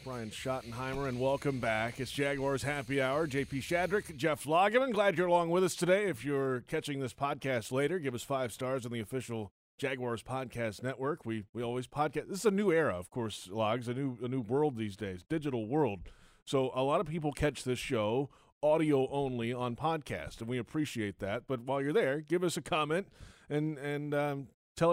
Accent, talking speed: American, 200 wpm